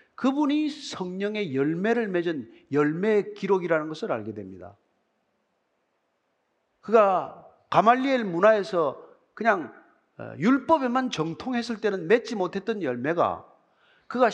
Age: 40-59